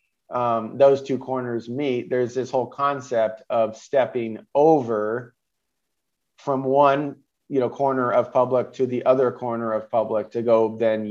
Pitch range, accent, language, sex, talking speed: 110-125 Hz, American, English, male, 150 wpm